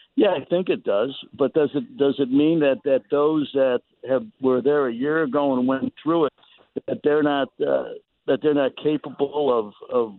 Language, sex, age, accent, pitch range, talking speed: English, male, 60-79, American, 135-165 Hz, 205 wpm